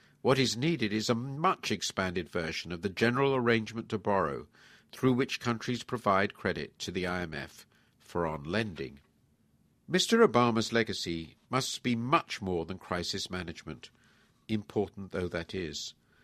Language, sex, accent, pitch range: English, male, British, 95-125 Hz